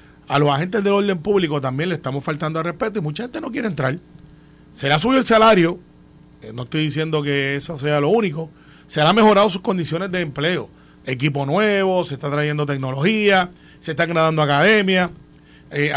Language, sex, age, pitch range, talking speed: Spanish, male, 30-49, 150-200 Hz, 190 wpm